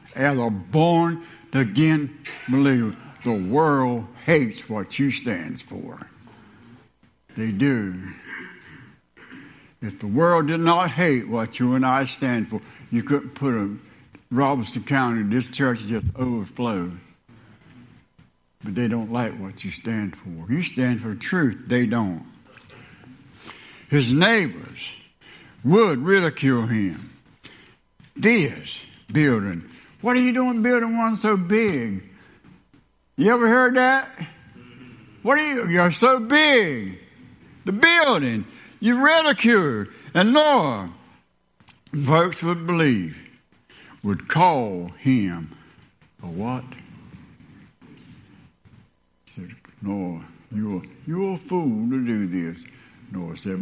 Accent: American